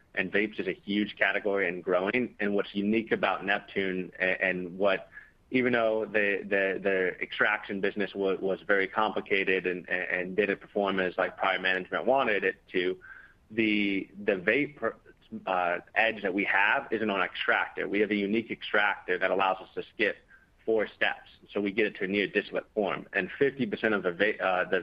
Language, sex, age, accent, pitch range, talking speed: English, male, 30-49, American, 95-115 Hz, 190 wpm